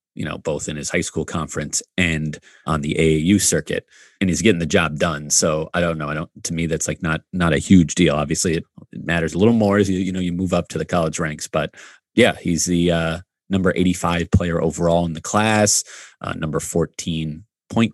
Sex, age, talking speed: male, 30-49, 225 wpm